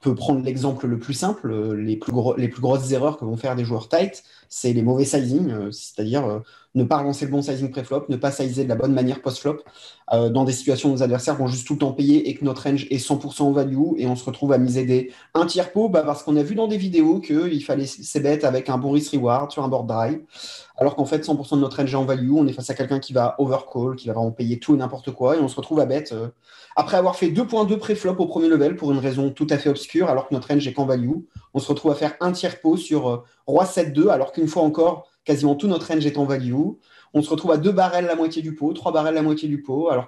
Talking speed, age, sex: 275 wpm, 20-39, male